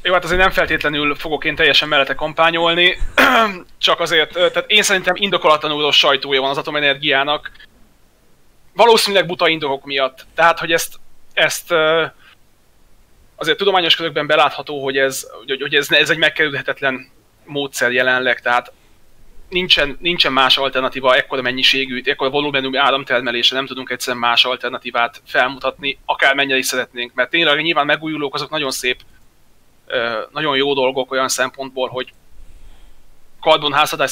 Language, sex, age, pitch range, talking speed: Hungarian, male, 20-39, 125-150 Hz, 135 wpm